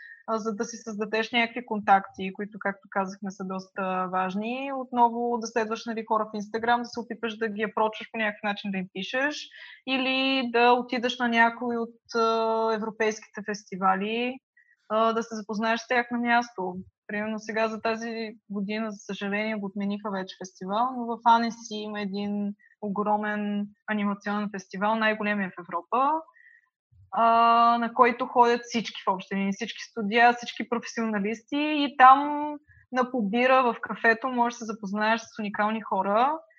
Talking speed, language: 155 wpm, Bulgarian